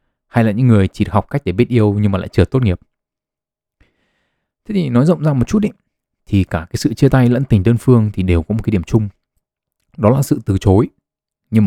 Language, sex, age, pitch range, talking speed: Vietnamese, male, 20-39, 95-125 Hz, 240 wpm